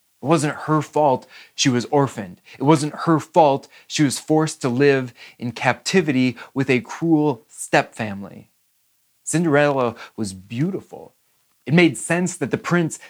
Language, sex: English, male